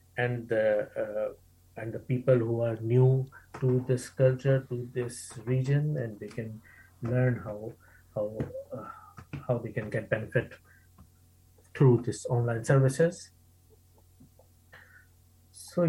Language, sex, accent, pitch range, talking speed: English, male, Indian, 110-135 Hz, 120 wpm